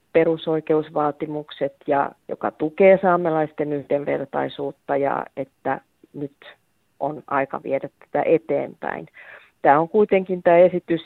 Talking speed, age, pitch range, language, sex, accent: 105 wpm, 40-59, 150-170 Hz, Finnish, female, native